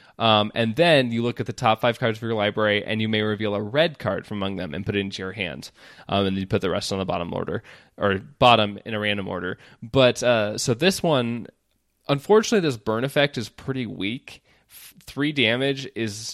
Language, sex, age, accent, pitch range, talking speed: English, male, 20-39, American, 105-130 Hz, 220 wpm